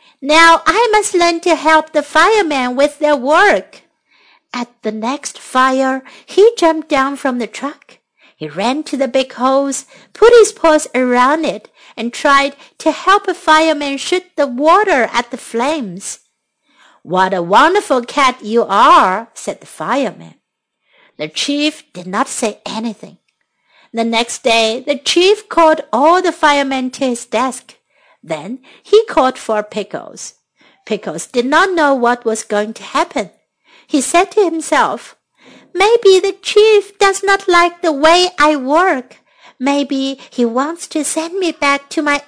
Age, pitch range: 60-79, 250-330 Hz